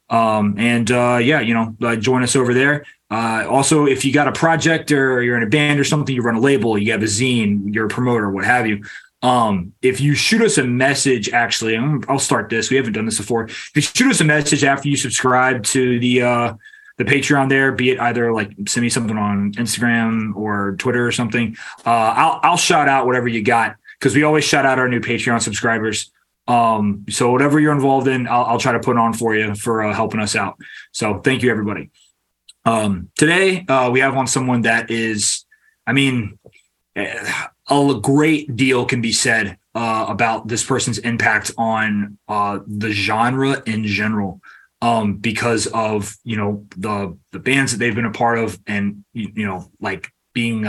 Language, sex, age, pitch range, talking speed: English, male, 20-39, 110-135 Hz, 200 wpm